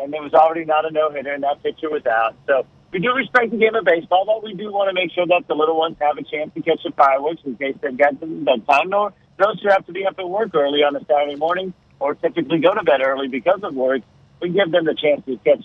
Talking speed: 285 wpm